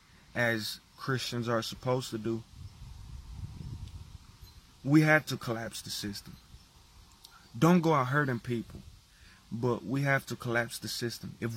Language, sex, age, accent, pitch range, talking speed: English, male, 30-49, American, 110-135 Hz, 130 wpm